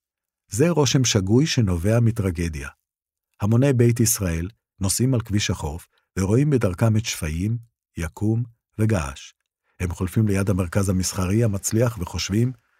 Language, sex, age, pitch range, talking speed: Hebrew, male, 50-69, 90-115 Hz, 115 wpm